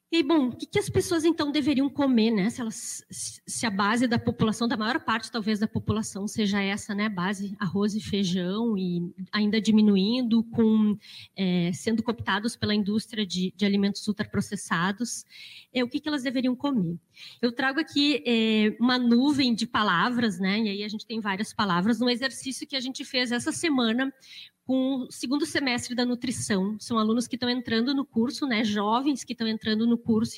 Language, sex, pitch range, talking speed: Portuguese, female, 205-245 Hz, 190 wpm